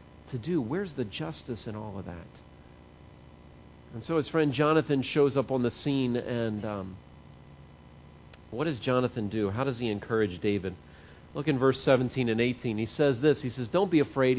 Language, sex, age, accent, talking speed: English, male, 40-59, American, 185 wpm